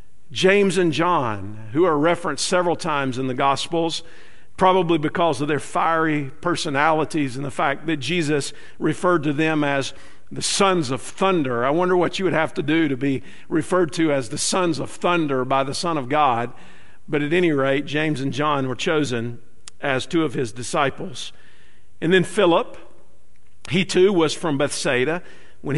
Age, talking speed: 50-69, 175 wpm